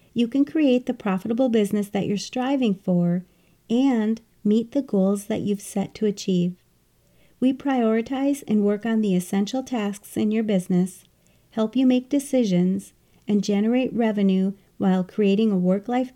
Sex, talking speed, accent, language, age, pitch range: female, 150 wpm, American, English, 40-59, 195-245 Hz